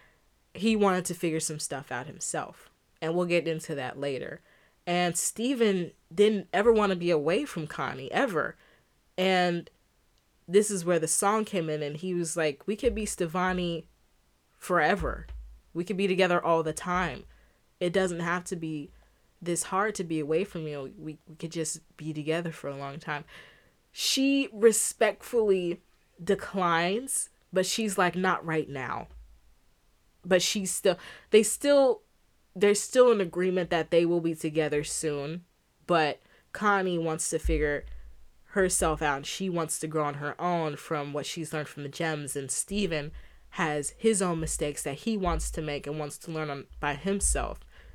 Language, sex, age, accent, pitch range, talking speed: English, female, 20-39, American, 150-185 Hz, 170 wpm